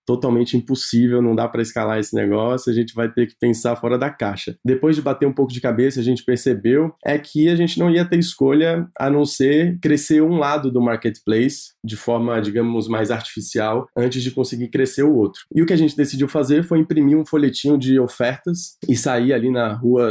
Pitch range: 115-140 Hz